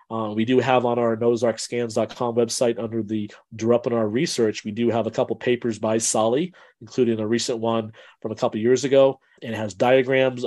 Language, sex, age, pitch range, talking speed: English, male, 40-59, 115-130 Hz, 195 wpm